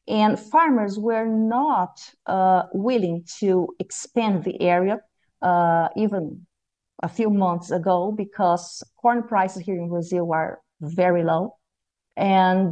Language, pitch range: English, 180-215 Hz